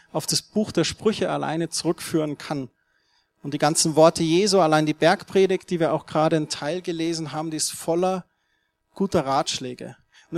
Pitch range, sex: 145-185 Hz, male